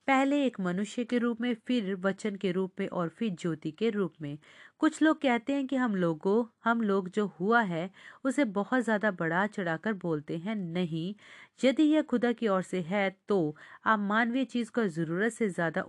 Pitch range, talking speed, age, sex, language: 180-235 Hz, 195 wpm, 40-59, female, Hindi